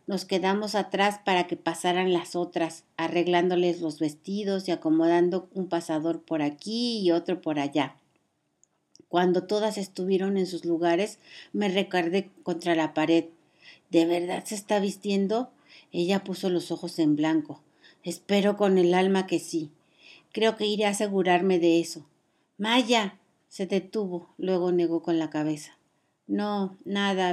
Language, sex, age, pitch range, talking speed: Spanish, female, 50-69, 170-200 Hz, 145 wpm